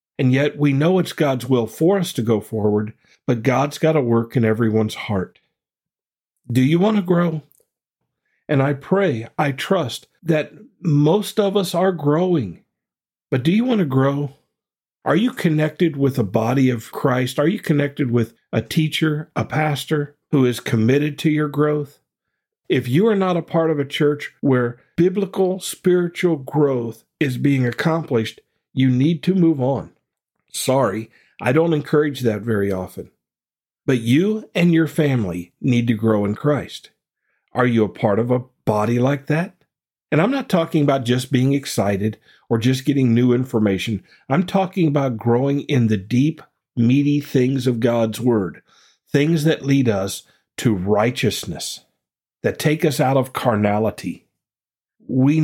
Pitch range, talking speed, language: 120-155 Hz, 160 wpm, English